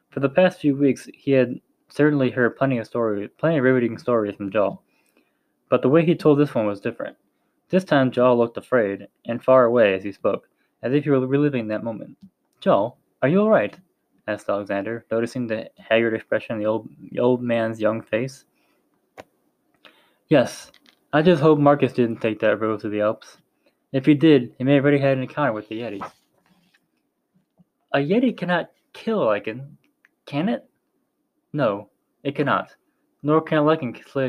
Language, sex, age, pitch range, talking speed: English, male, 10-29, 110-145 Hz, 180 wpm